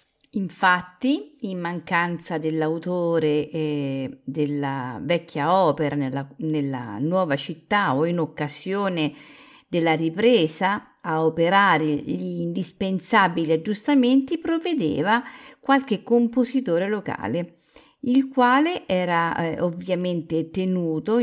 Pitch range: 160-230 Hz